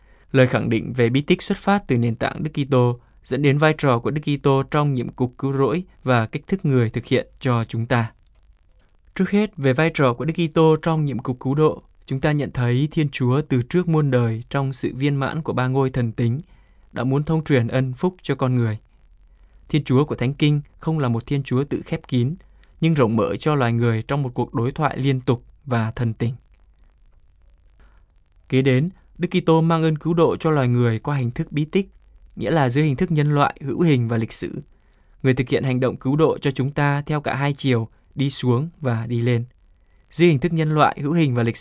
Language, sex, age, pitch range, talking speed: Vietnamese, male, 20-39, 120-150 Hz, 230 wpm